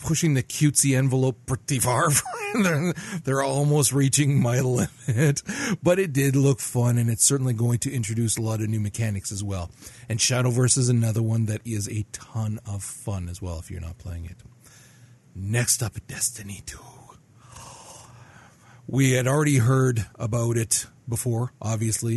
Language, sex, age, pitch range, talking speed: English, male, 40-59, 105-130 Hz, 160 wpm